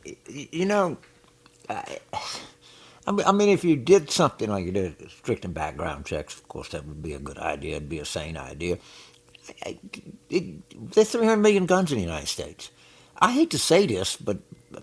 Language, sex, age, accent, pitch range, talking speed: English, male, 60-79, American, 85-120 Hz, 180 wpm